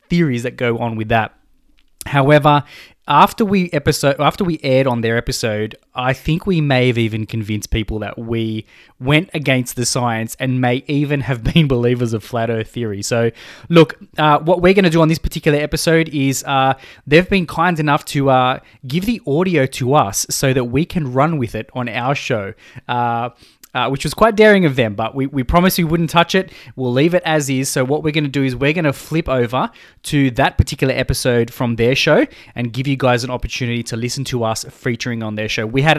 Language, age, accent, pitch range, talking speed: English, 20-39, Australian, 120-155 Hz, 220 wpm